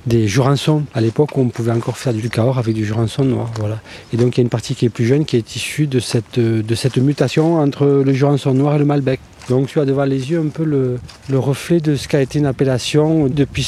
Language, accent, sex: French, French, male